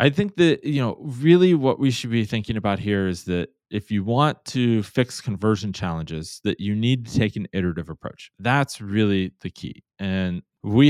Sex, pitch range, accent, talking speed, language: male, 100-135 Hz, American, 200 wpm, English